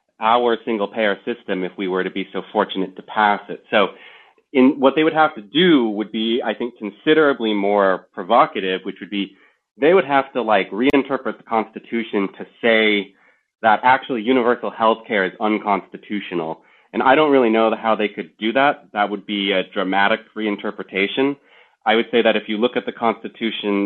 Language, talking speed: English, 190 wpm